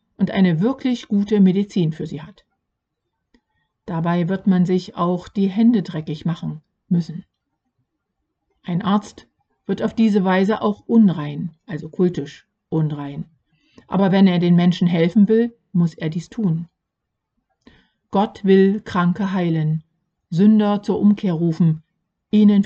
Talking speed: 130 wpm